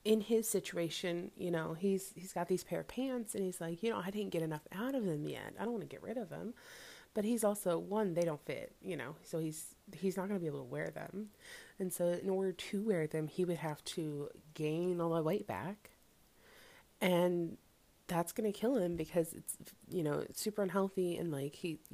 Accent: American